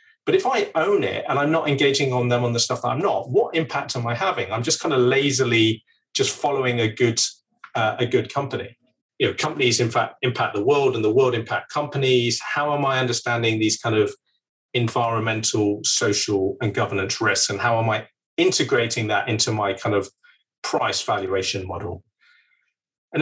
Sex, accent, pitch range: male, British, 110-140 Hz